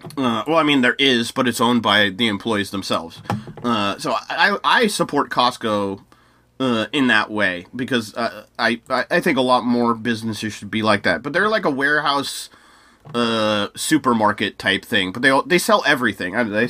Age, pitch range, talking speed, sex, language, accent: 30-49, 120-160 Hz, 195 wpm, male, English, American